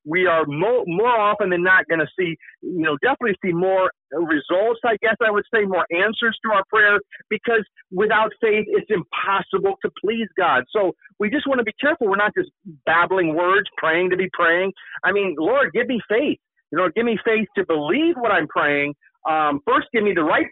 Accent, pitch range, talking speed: American, 175-230 Hz, 210 wpm